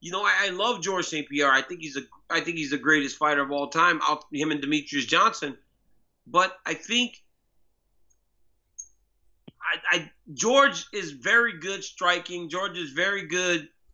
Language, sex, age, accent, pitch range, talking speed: English, male, 30-49, American, 135-180 Hz, 170 wpm